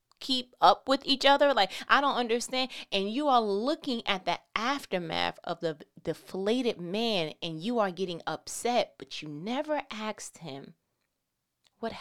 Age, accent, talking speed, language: 20-39, American, 155 wpm, English